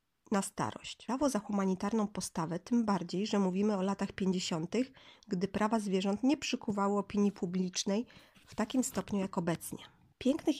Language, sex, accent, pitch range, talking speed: Polish, female, native, 185-220 Hz, 145 wpm